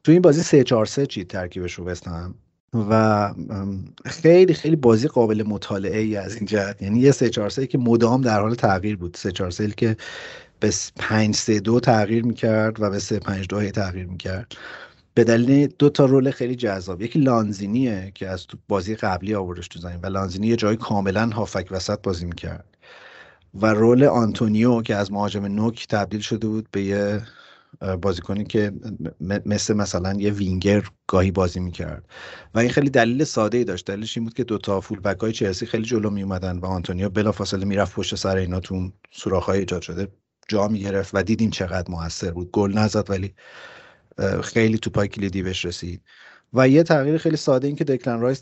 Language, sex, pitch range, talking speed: Persian, male, 95-115 Hz, 170 wpm